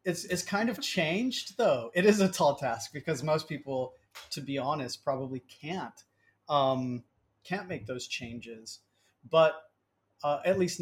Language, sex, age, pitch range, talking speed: English, male, 30-49, 125-160 Hz, 155 wpm